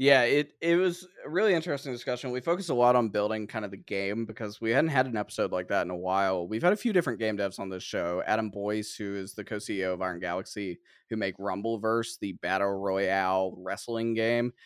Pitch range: 100-125 Hz